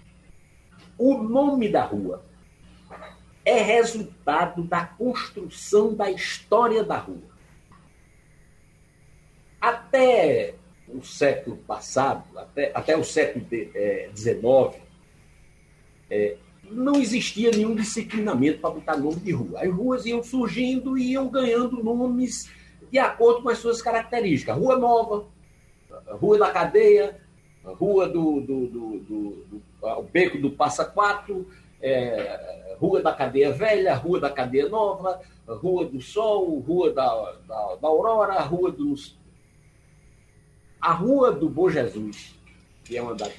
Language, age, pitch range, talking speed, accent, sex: Portuguese, 60-79, 155-250 Hz, 125 wpm, Brazilian, male